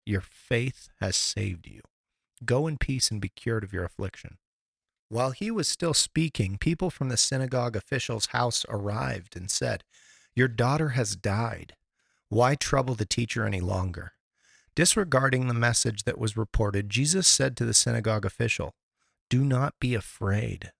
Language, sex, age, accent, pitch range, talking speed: English, male, 40-59, American, 100-130 Hz, 155 wpm